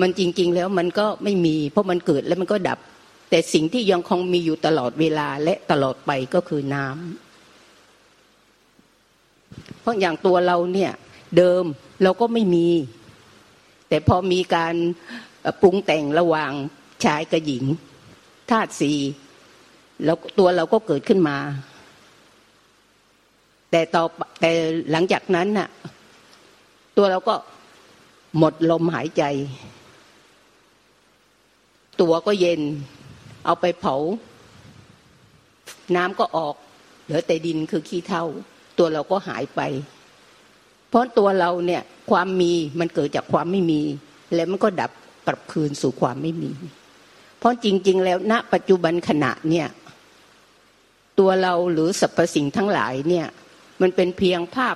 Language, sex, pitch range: Thai, female, 150-185 Hz